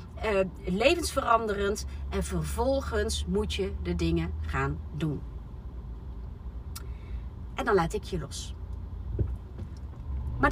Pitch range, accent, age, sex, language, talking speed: 65-80 Hz, Dutch, 30-49, female, Dutch, 95 wpm